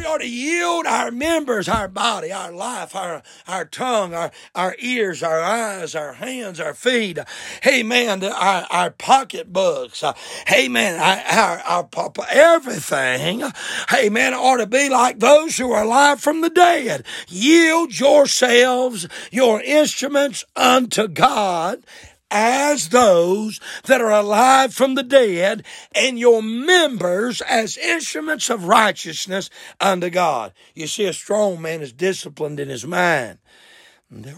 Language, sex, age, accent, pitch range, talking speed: English, male, 60-79, American, 175-245 Hz, 140 wpm